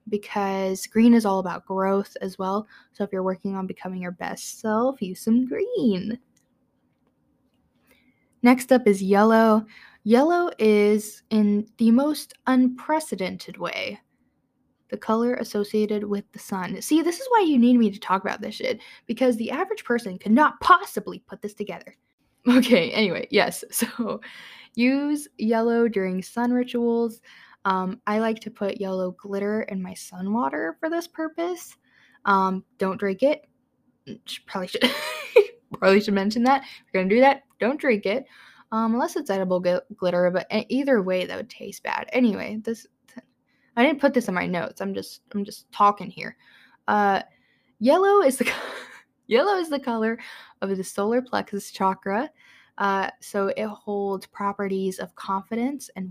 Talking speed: 160 wpm